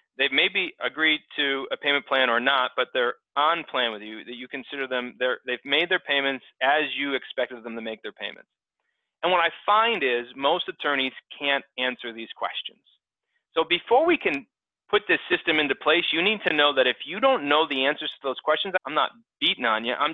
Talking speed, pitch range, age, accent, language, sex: 210 wpm, 120-155 Hz, 30-49, American, English, male